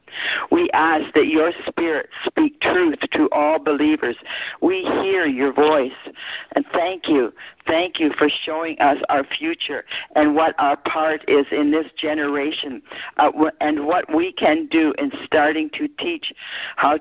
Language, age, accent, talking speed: English, 50-69, American, 150 wpm